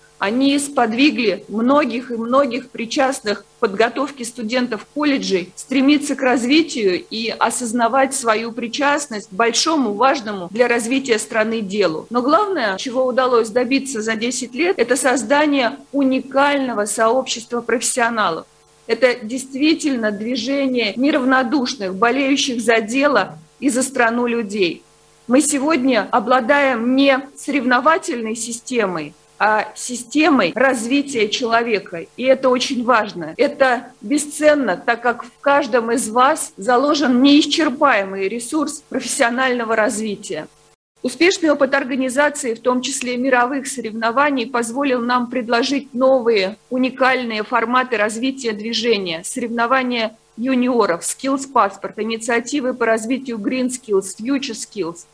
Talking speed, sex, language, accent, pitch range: 110 wpm, female, Russian, native, 225-270 Hz